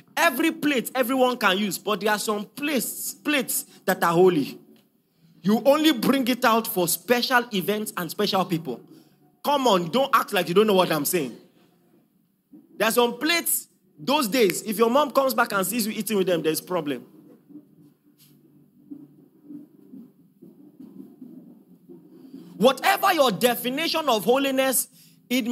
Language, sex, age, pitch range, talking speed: English, male, 30-49, 210-275 Hz, 145 wpm